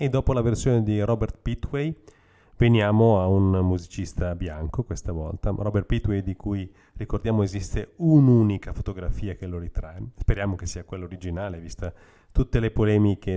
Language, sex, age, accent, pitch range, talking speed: Italian, male, 30-49, native, 90-105 Hz, 155 wpm